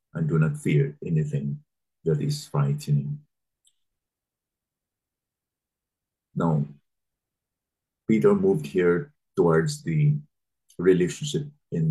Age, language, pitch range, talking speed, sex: 50-69, English, 95-150 Hz, 80 wpm, male